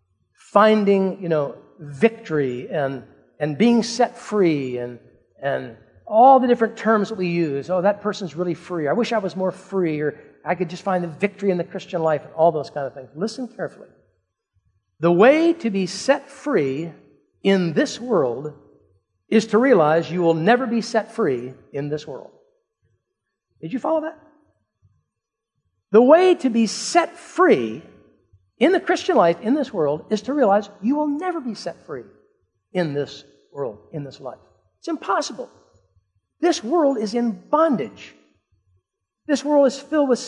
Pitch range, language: 145-240 Hz, English